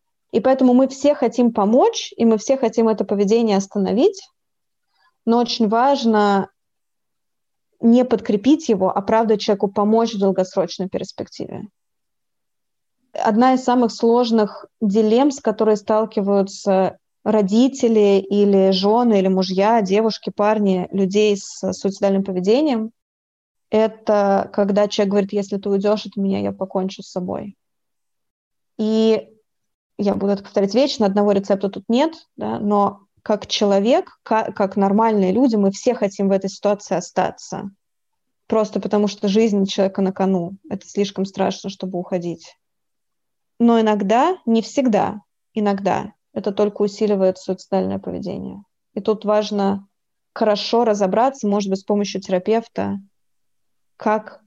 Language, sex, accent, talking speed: Russian, female, native, 125 wpm